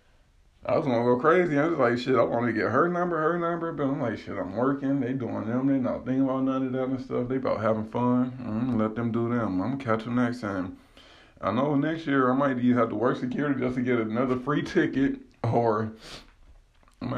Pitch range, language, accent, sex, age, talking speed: 105-125 Hz, English, American, male, 20-39, 250 wpm